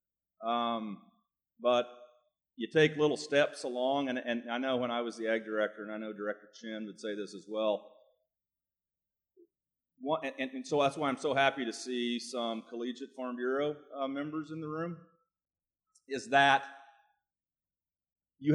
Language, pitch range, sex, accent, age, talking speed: English, 105-135 Hz, male, American, 40-59, 160 wpm